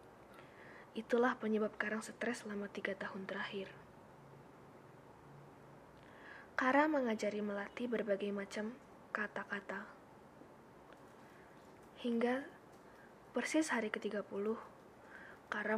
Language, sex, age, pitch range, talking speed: Indonesian, female, 20-39, 200-240 Hz, 70 wpm